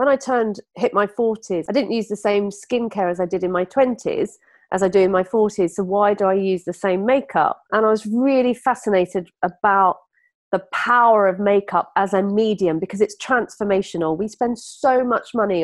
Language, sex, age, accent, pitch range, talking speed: English, female, 40-59, British, 190-245 Hz, 205 wpm